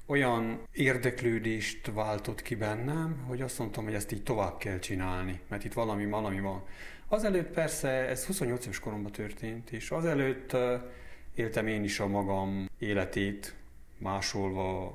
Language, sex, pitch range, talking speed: Hungarian, male, 90-110 Hz, 135 wpm